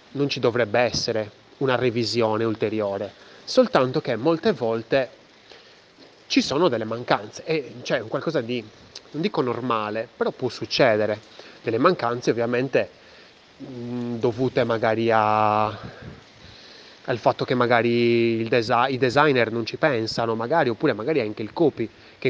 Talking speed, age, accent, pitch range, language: 130 wpm, 20-39, native, 110-135 Hz, Italian